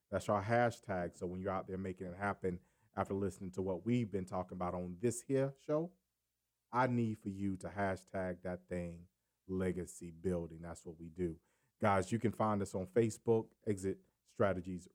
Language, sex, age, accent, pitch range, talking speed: English, male, 40-59, American, 95-115 Hz, 185 wpm